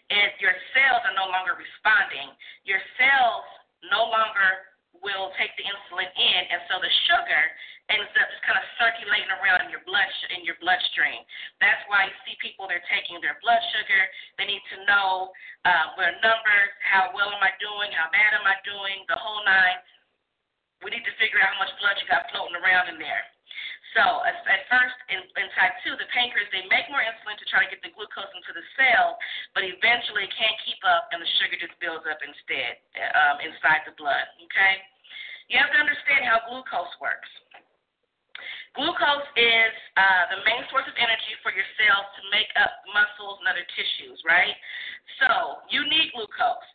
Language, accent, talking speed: English, American, 185 wpm